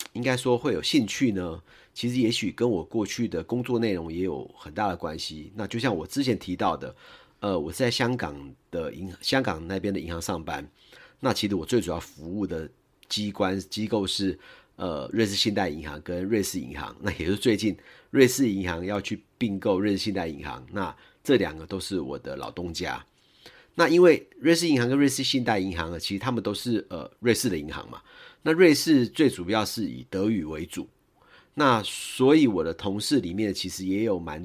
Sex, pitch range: male, 95-130 Hz